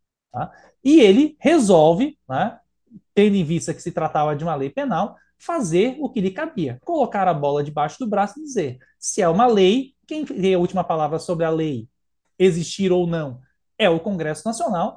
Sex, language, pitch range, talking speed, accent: male, Portuguese, 175-255 Hz, 185 wpm, Brazilian